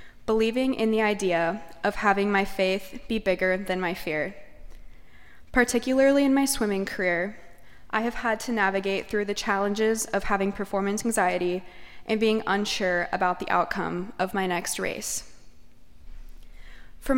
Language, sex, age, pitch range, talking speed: English, female, 20-39, 190-225 Hz, 145 wpm